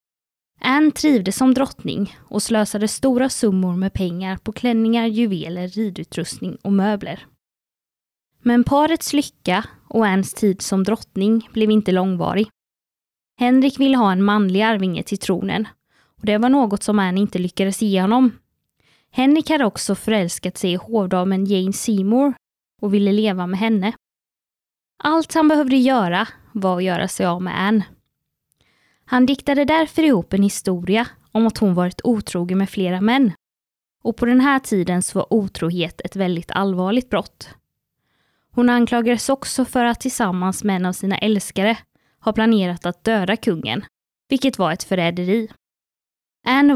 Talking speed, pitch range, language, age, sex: 150 wpm, 190-240 Hz, English, 20-39, female